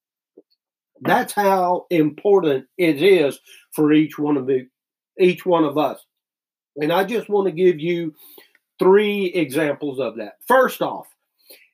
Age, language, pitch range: 50-69, English, 155-190 Hz